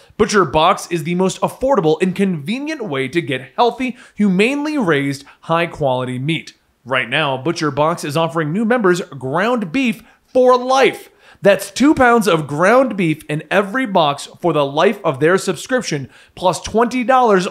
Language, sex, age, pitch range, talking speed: English, male, 30-49, 150-220 Hz, 150 wpm